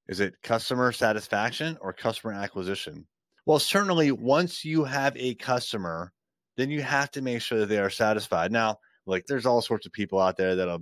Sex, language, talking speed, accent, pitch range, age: male, English, 190 wpm, American, 100-135 Hz, 30-49